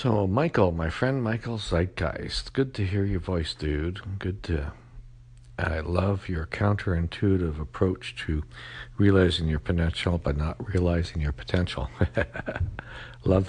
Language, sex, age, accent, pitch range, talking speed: English, male, 60-79, American, 80-115 Hz, 135 wpm